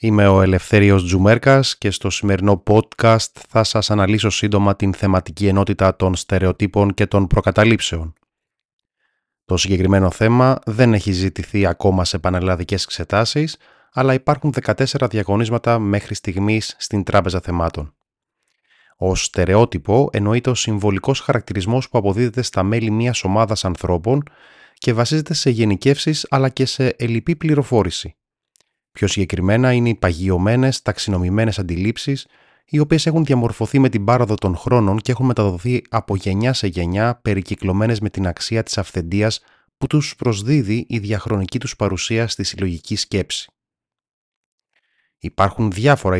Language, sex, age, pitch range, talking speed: Greek, male, 30-49, 95-120 Hz, 130 wpm